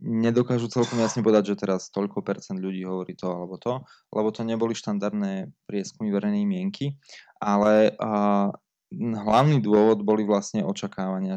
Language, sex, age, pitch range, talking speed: Slovak, male, 20-39, 100-120 Hz, 135 wpm